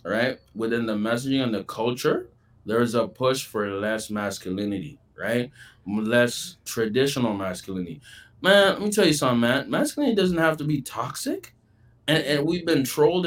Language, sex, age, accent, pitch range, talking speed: English, male, 20-39, American, 110-145 Hz, 165 wpm